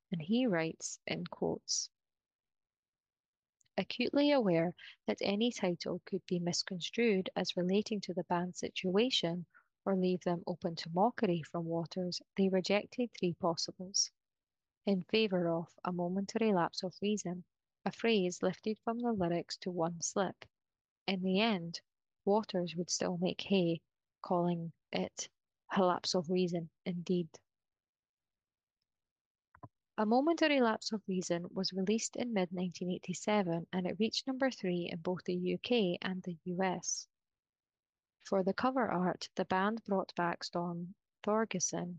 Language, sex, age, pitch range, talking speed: English, female, 20-39, 175-210 Hz, 135 wpm